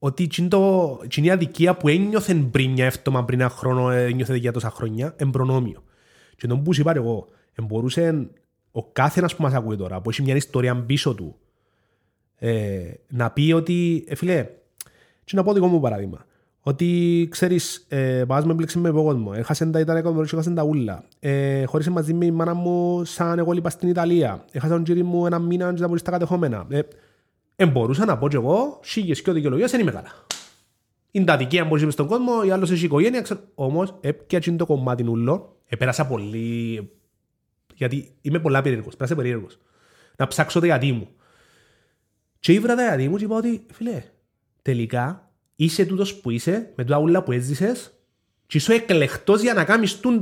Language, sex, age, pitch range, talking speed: Greek, male, 30-49, 125-180 Hz, 180 wpm